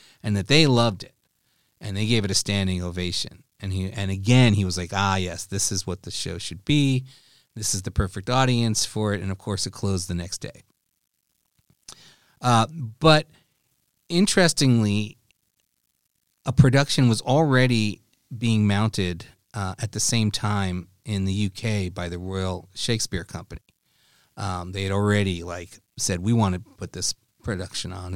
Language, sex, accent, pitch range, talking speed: English, male, American, 95-120 Hz, 165 wpm